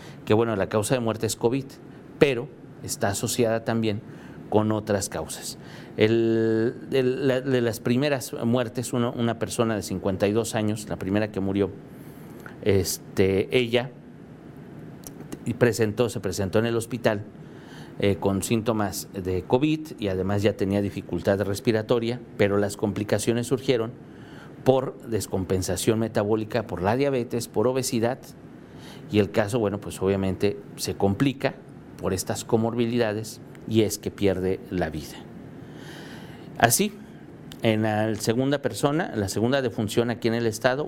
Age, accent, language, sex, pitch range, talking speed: 50-69, Mexican, Spanish, male, 100-120 Hz, 135 wpm